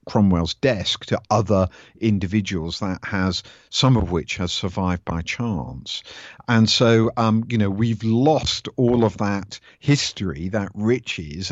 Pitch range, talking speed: 95-115 Hz, 140 wpm